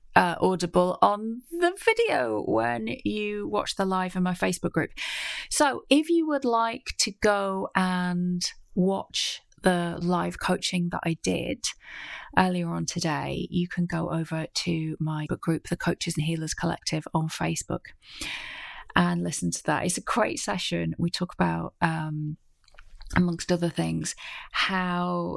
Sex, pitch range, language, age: female, 160-190 Hz, English, 30-49